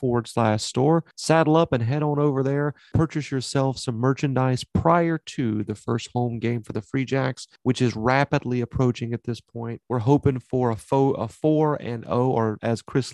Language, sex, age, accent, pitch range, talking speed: English, male, 30-49, American, 110-130 Hz, 195 wpm